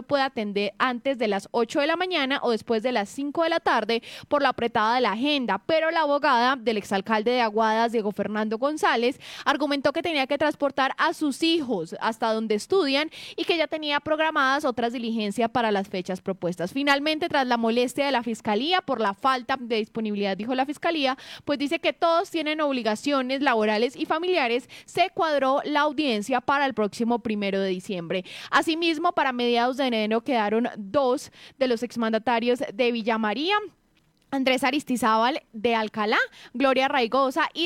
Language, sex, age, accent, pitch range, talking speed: Spanish, female, 10-29, Colombian, 225-290 Hz, 170 wpm